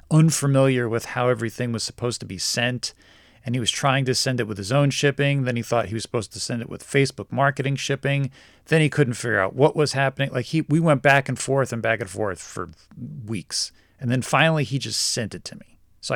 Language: English